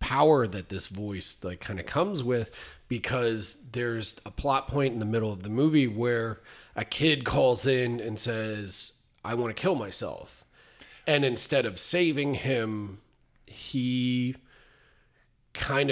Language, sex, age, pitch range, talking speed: English, male, 30-49, 105-130 Hz, 145 wpm